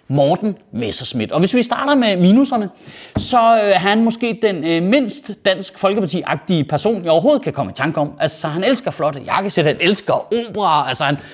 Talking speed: 185 wpm